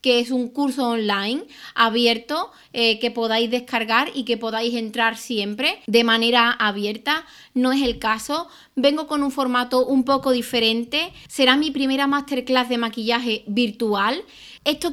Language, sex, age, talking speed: Spanish, female, 20-39, 150 wpm